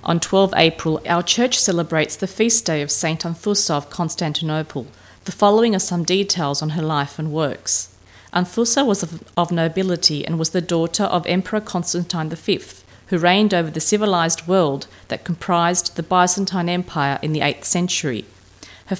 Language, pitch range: English, 155-195 Hz